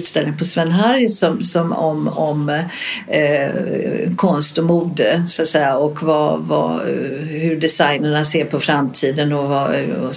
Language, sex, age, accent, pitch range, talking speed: Swedish, female, 60-79, native, 165-210 Hz, 130 wpm